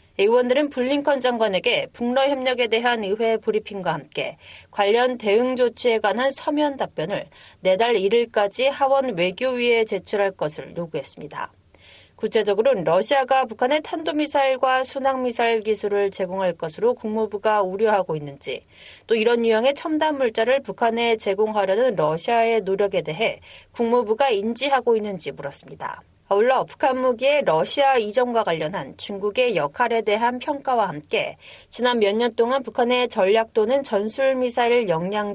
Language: Korean